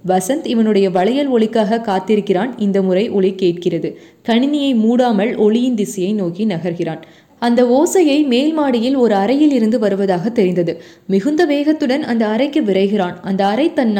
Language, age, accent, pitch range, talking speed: Tamil, 20-39, native, 190-255 Hz, 135 wpm